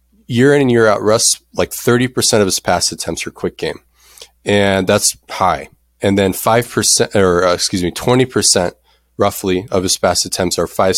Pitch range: 85-105 Hz